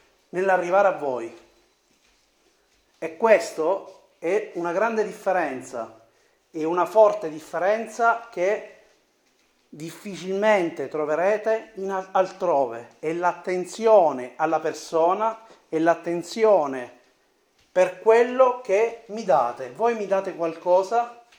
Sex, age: male, 40-59